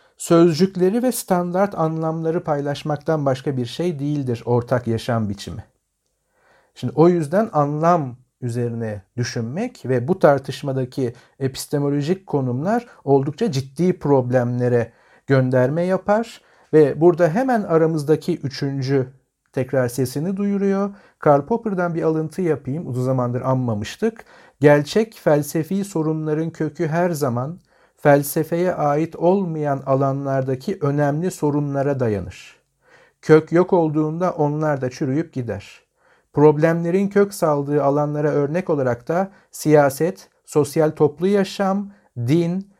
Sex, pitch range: male, 135-175 Hz